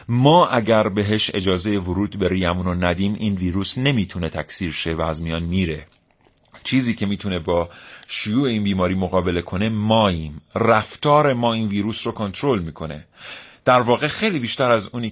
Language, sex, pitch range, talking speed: Persian, male, 90-120 Hz, 165 wpm